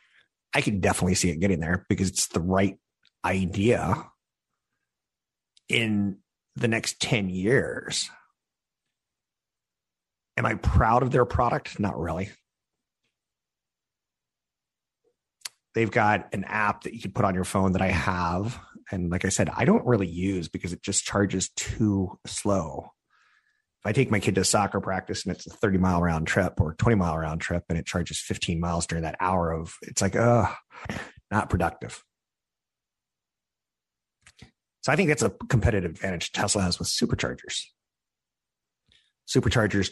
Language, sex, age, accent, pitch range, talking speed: English, male, 30-49, American, 85-105 Hz, 145 wpm